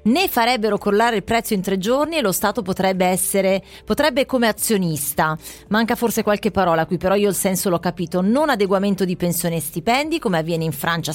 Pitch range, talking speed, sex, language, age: 175-225 Hz, 200 wpm, female, Italian, 30-49